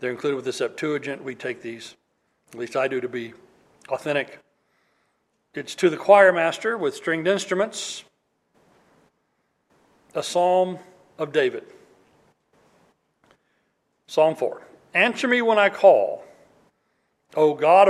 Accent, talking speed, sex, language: American, 120 wpm, male, English